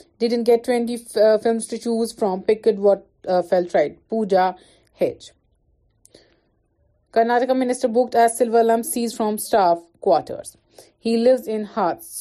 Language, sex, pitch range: Urdu, female, 200-240 Hz